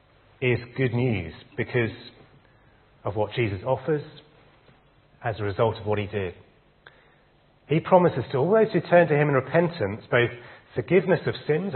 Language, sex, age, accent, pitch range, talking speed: English, male, 30-49, British, 110-145 Hz, 155 wpm